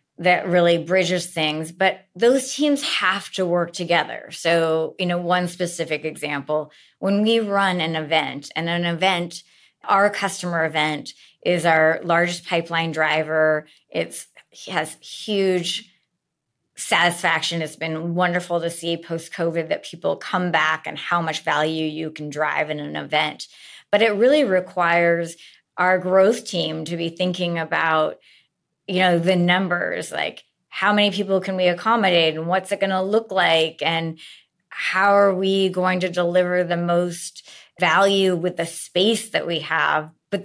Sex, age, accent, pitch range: female, 30-49, American, 160-190 Hz